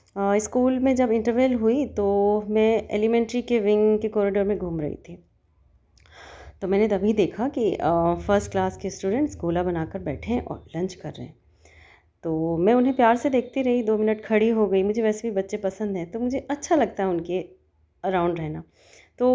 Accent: native